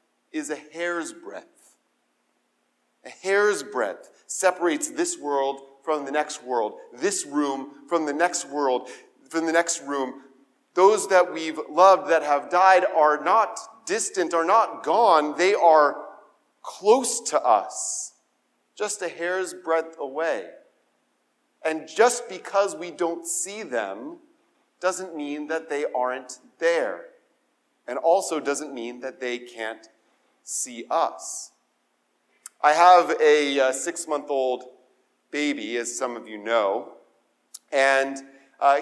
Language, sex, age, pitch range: English, male, 40-59, 140-180 Hz